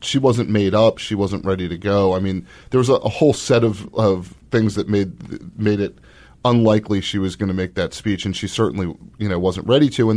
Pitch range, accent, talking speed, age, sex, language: 90-105 Hz, American, 240 wpm, 30-49, male, English